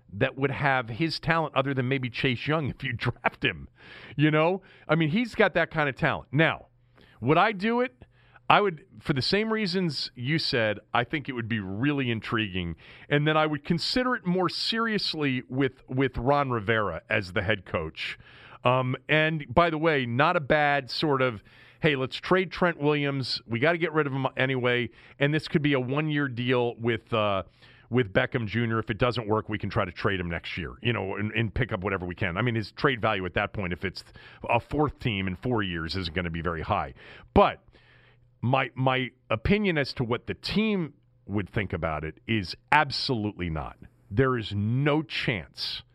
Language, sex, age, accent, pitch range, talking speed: English, male, 40-59, American, 110-150 Hz, 205 wpm